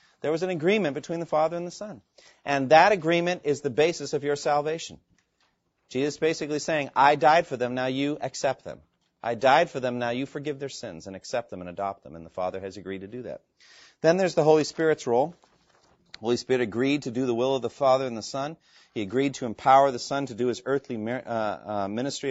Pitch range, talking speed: 120-150 Hz, 230 wpm